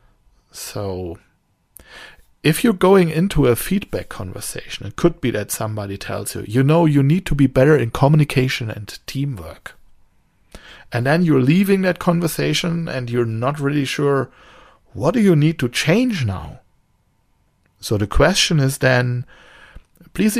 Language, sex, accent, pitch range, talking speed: English, male, German, 105-150 Hz, 145 wpm